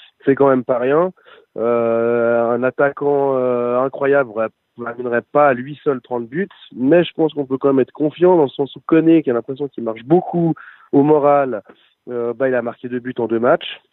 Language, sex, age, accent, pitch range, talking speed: French, male, 20-39, French, 115-140 Hz, 215 wpm